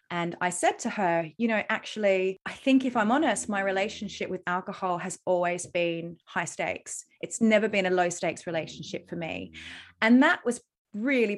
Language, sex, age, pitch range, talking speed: English, female, 20-39, 175-230 Hz, 185 wpm